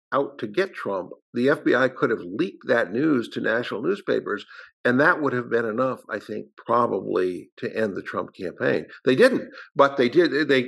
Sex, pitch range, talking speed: male, 120-165 Hz, 190 wpm